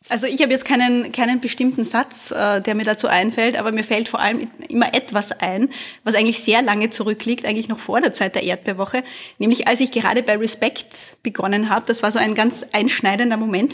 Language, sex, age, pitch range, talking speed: German, female, 20-39, 220-255 Hz, 205 wpm